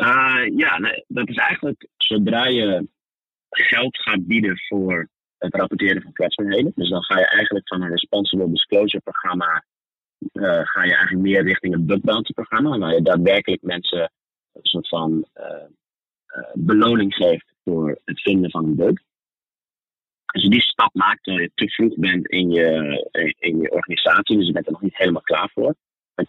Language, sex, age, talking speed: Dutch, male, 30-49, 165 wpm